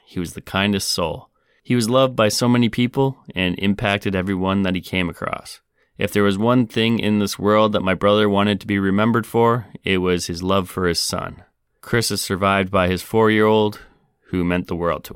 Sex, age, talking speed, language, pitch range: male, 30-49, 210 wpm, English, 90-105 Hz